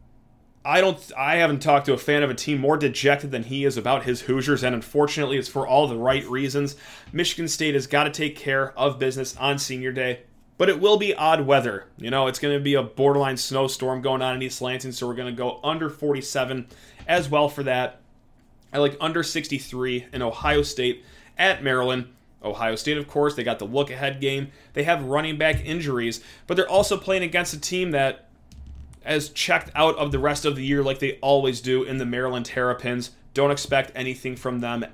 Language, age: English, 30-49